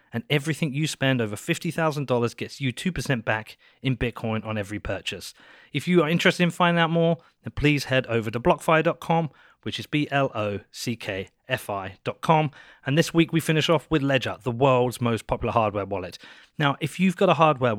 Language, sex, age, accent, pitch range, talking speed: English, male, 30-49, British, 115-160 Hz, 175 wpm